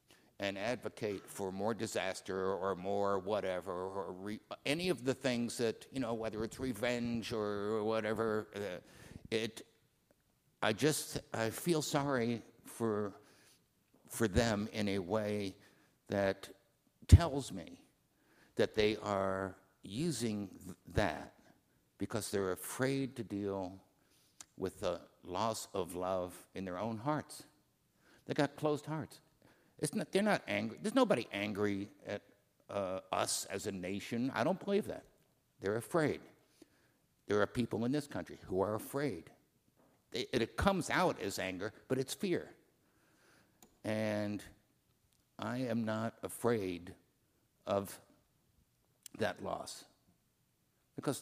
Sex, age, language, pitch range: male, 60-79, English, 100-130 Hz